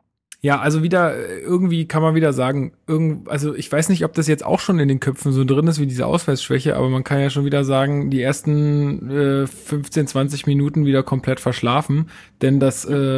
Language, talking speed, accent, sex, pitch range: German, 200 wpm, German, male, 130-155 Hz